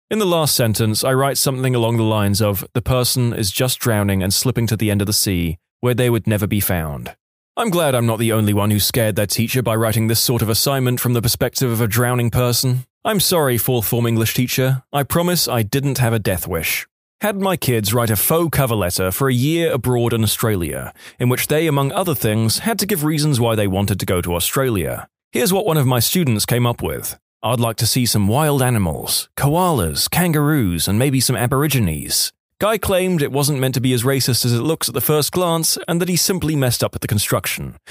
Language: English